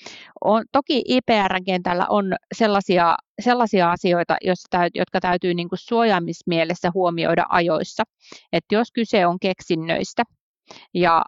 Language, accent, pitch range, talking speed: Finnish, native, 175-220 Hz, 115 wpm